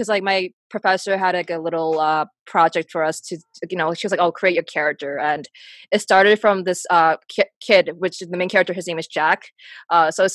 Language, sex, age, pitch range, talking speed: English, female, 20-39, 170-210 Hz, 245 wpm